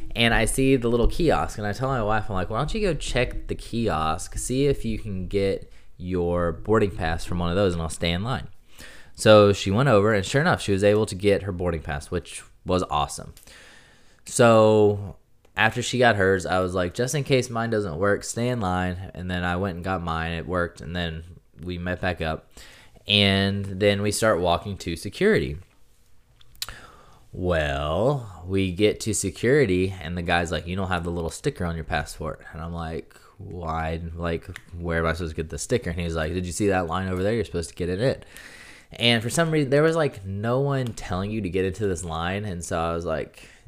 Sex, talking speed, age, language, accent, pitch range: male, 225 wpm, 20-39, English, American, 85-110 Hz